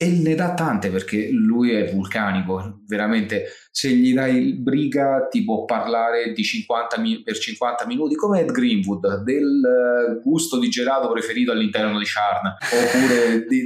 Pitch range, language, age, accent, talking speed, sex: 100-135 Hz, Italian, 30-49, native, 160 wpm, male